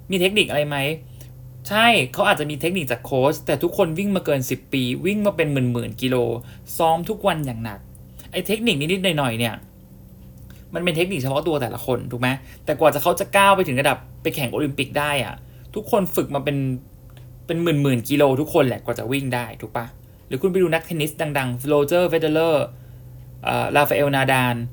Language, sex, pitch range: English, male, 125-175 Hz